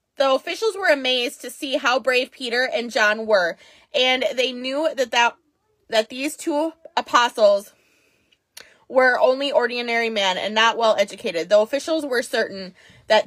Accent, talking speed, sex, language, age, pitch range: American, 155 wpm, female, English, 20-39, 225-300 Hz